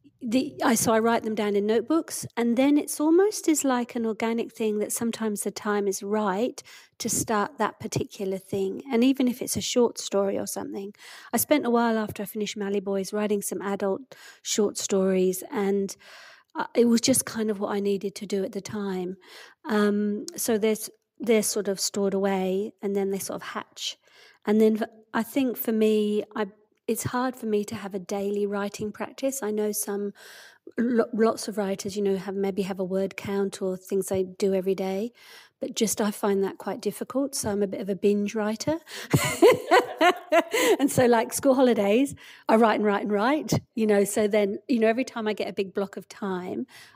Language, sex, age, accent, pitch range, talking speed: English, female, 40-59, British, 200-235 Hz, 205 wpm